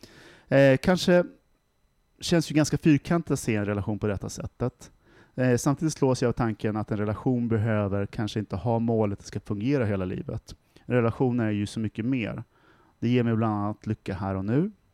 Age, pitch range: 30-49, 105-130 Hz